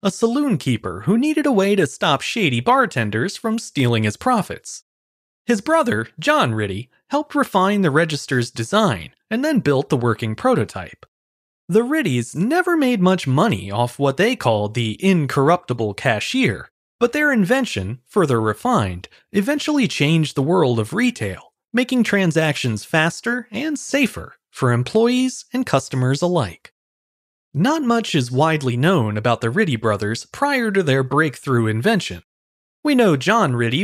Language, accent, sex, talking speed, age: English, American, male, 145 wpm, 30-49